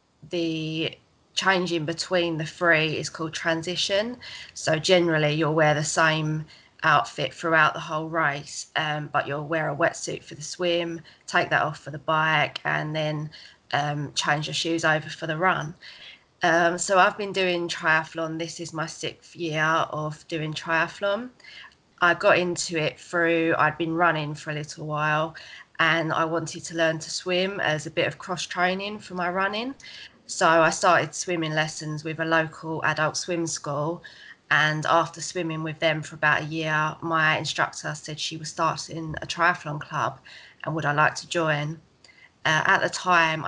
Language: English